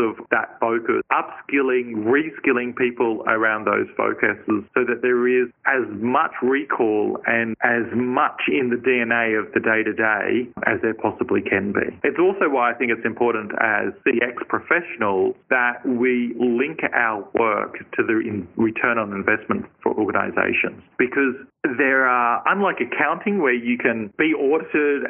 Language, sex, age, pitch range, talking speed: English, male, 40-59, 115-130 Hz, 155 wpm